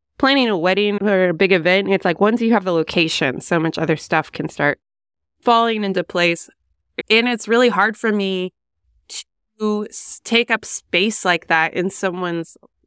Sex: female